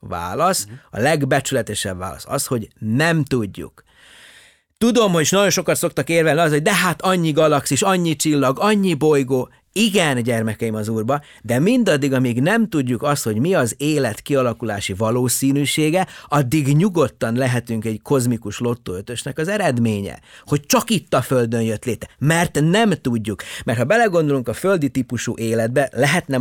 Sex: male